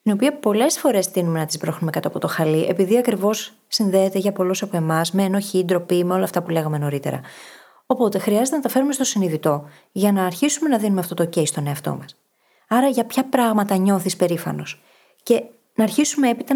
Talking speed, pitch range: 205 wpm, 165-220 Hz